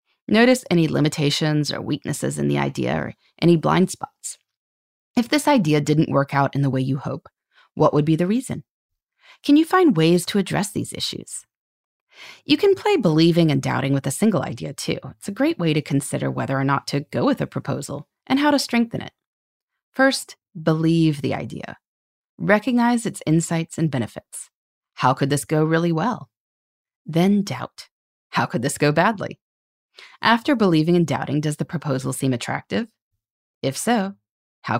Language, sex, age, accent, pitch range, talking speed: English, female, 30-49, American, 140-215 Hz, 170 wpm